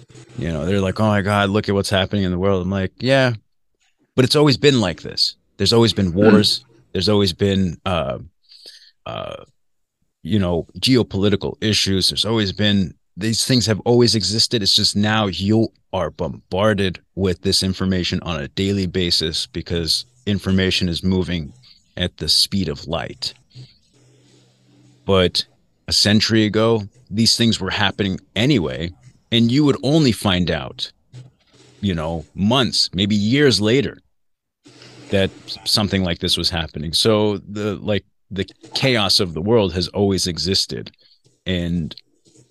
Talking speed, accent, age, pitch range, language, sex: 150 wpm, American, 30-49, 90-110 Hz, English, male